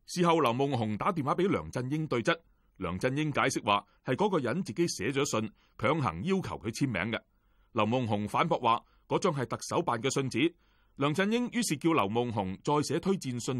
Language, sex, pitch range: Chinese, male, 100-155 Hz